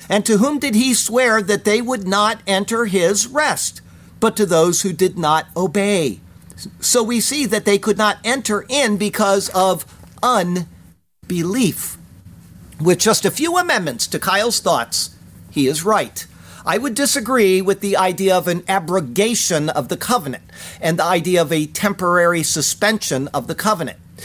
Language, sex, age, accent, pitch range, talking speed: English, male, 50-69, American, 170-225 Hz, 160 wpm